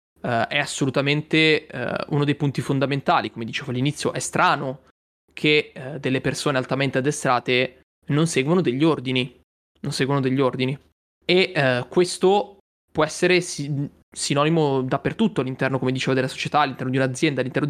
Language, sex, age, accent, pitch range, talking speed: Italian, male, 20-39, native, 130-155 Hz, 150 wpm